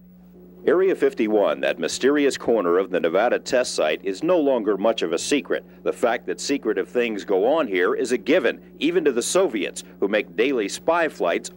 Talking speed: 190 wpm